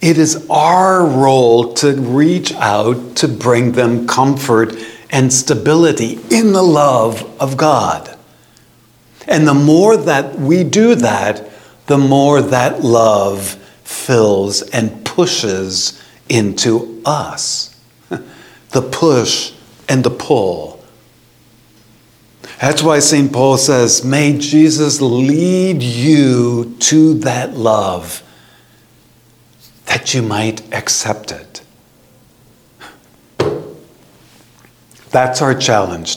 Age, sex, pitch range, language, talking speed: 50-69, male, 110-140 Hz, English, 100 wpm